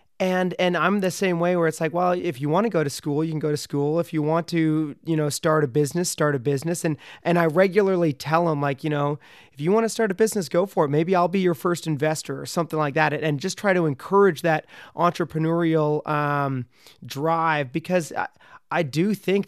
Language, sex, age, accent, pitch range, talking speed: English, male, 30-49, American, 150-175 Hz, 235 wpm